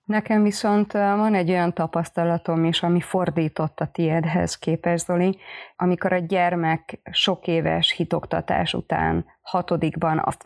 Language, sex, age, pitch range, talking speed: Hungarian, female, 30-49, 165-190 Hz, 125 wpm